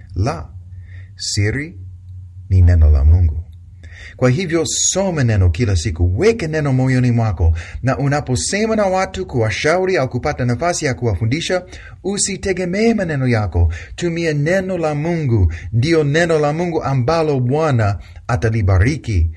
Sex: male